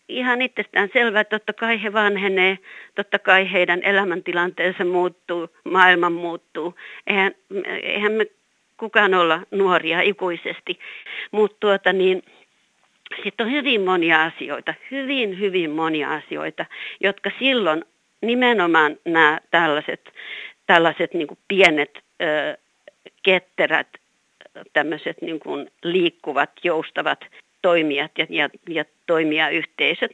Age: 50-69